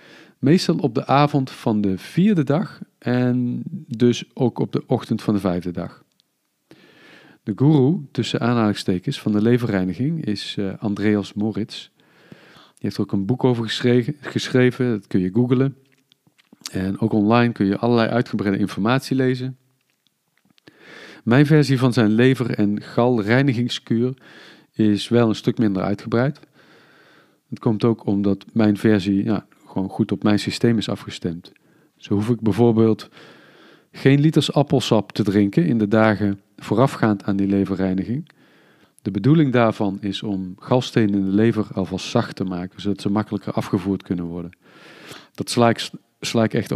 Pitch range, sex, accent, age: 100-130 Hz, male, Dutch, 40-59